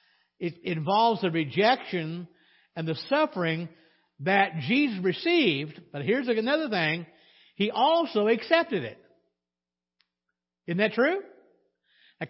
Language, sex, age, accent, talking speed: English, male, 50-69, American, 105 wpm